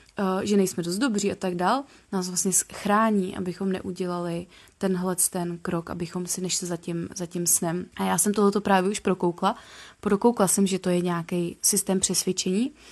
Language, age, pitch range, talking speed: Czech, 20-39, 180-200 Hz, 175 wpm